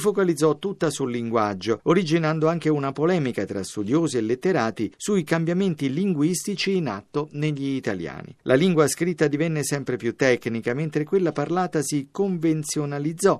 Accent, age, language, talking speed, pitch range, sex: native, 50-69, Italian, 140 wpm, 120-170 Hz, male